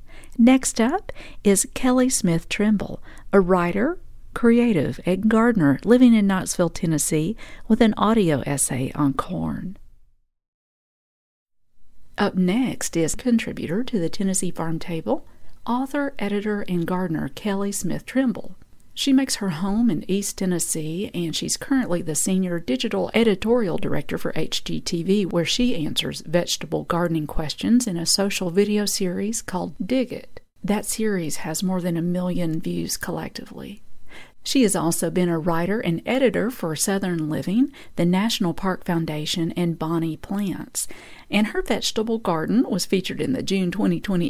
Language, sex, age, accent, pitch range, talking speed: English, female, 50-69, American, 165-220 Hz, 140 wpm